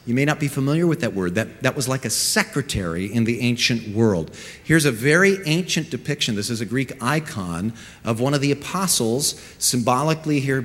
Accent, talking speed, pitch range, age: American, 195 wpm, 120-165 Hz, 40-59